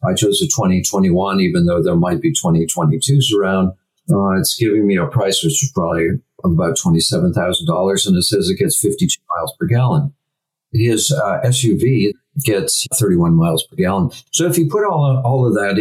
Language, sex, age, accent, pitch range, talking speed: English, male, 50-69, American, 105-150 Hz, 180 wpm